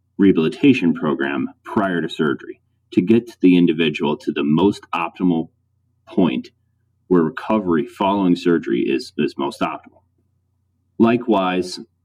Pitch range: 90-115 Hz